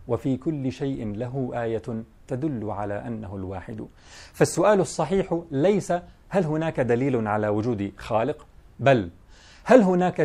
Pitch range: 120-160 Hz